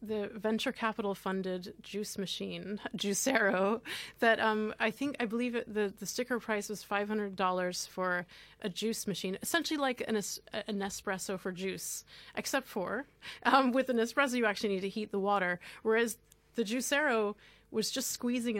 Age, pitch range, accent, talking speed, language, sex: 30-49, 190-225 Hz, American, 160 wpm, English, female